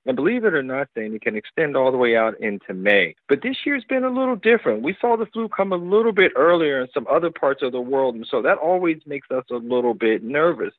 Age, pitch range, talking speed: 50-69, 115-170 Hz, 275 wpm